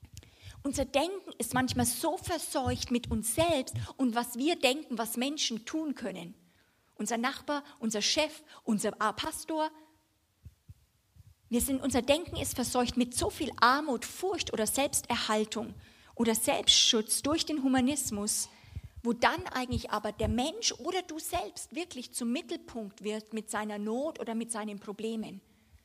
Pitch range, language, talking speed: 230-335 Hz, German, 140 wpm